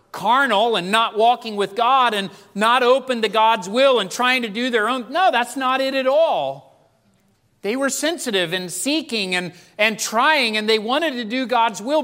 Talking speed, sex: 195 wpm, male